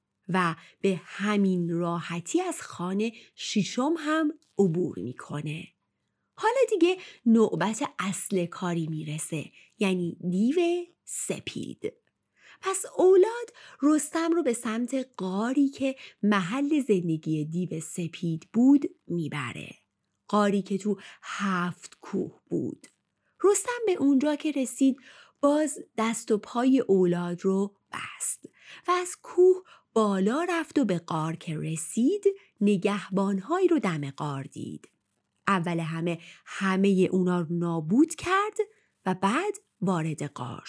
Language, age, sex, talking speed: Persian, 30-49, female, 115 wpm